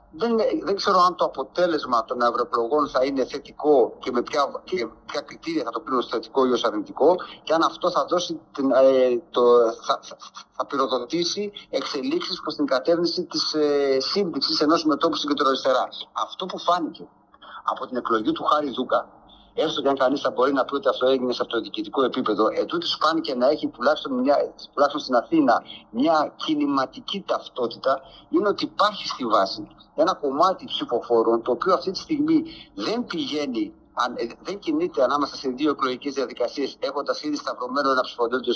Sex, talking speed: male, 175 wpm